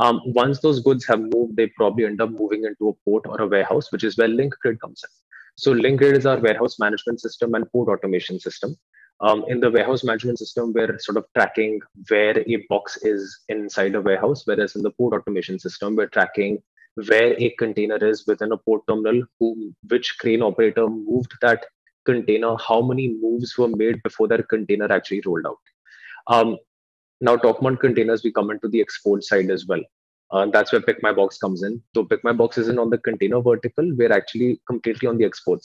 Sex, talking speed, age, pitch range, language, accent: male, 195 wpm, 20-39, 105-120 Hz, English, Indian